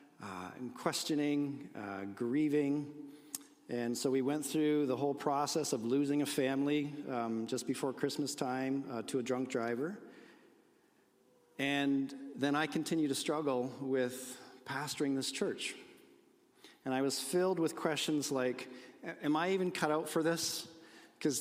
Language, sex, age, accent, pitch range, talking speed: English, male, 40-59, American, 130-155 Hz, 145 wpm